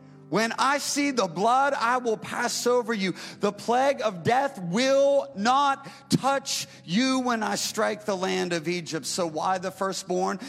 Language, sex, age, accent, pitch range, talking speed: English, male, 40-59, American, 195-230 Hz, 165 wpm